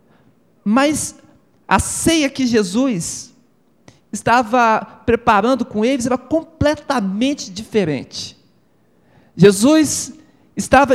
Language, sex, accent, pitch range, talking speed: Portuguese, male, Brazilian, 175-255 Hz, 75 wpm